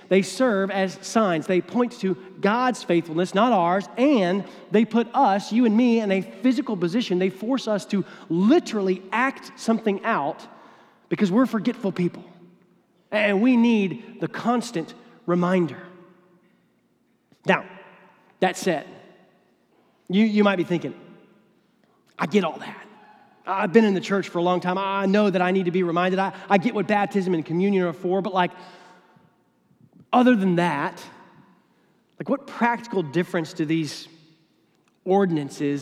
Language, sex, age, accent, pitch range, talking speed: English, male, 30-49, American, 180-225 Hz, 150 wpm